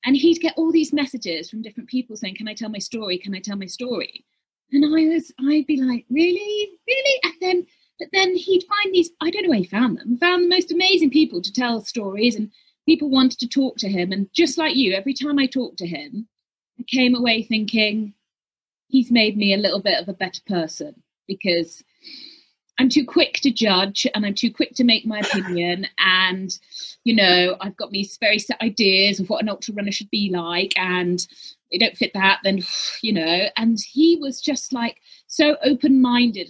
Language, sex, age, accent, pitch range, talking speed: English, female, 30-49, British, 200-290 Hz, 210 wpm